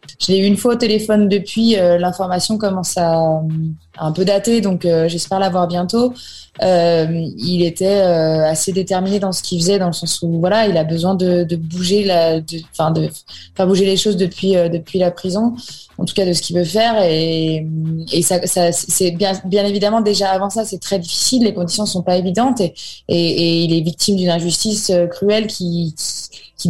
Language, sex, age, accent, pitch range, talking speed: French, female, 20-39, French, 165-200 Hz, 215 wpm